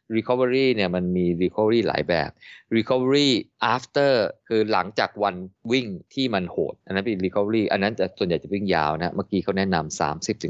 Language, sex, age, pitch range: Thai, male, 20-39, 85-110 Hz